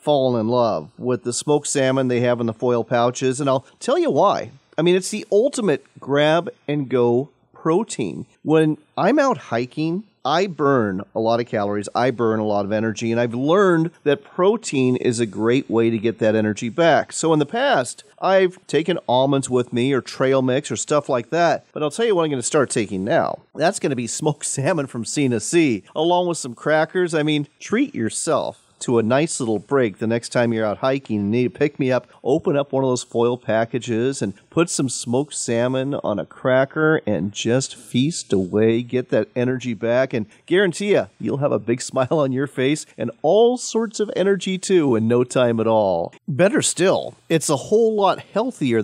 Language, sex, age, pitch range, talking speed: English, male, 40-59, 120-165 Hz, 210 wpm